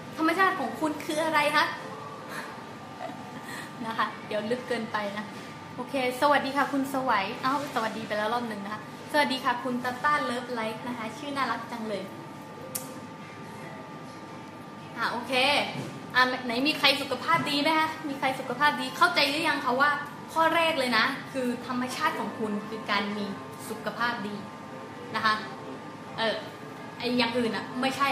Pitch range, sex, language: 225-290 Hz, female, English